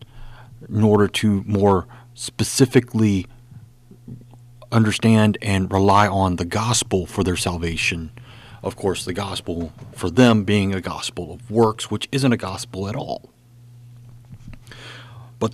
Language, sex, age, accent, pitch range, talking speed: English, male, 40-59, American, 105-125 Hz, 125 wpm